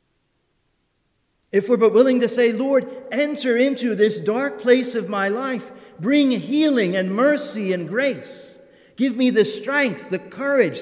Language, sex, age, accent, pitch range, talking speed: English, male, 50-69, American, 155-250 Hz, 150 wpm